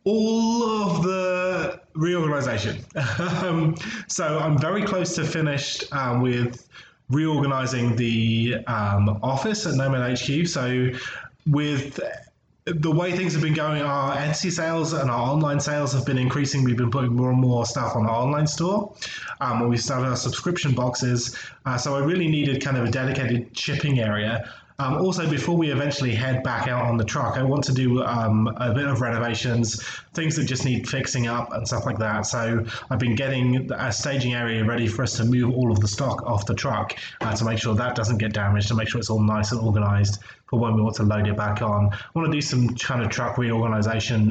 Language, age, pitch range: English, 20-39, 115-145 Hz